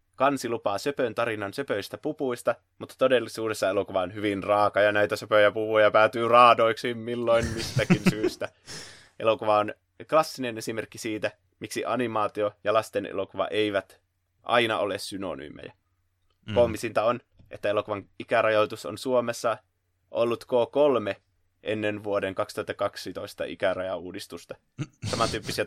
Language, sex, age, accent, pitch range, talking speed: Finnish, male, 20-39, native, 100-120 Hz, 110 wpm